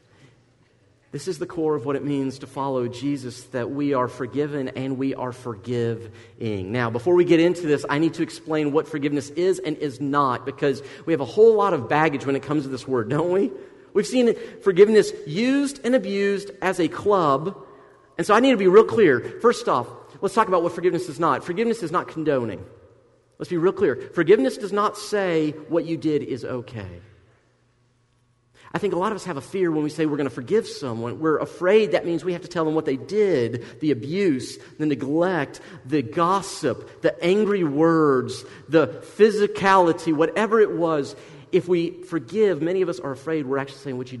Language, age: English, 40-59